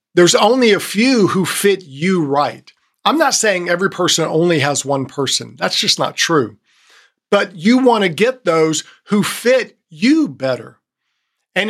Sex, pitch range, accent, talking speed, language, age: male, 155-205 Hz, American, 165 wpm, English, 50-69